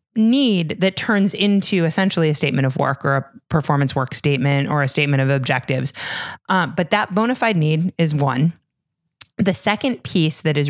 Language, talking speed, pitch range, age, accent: English, 180 wpm, 150-190 Hz, 30-49, American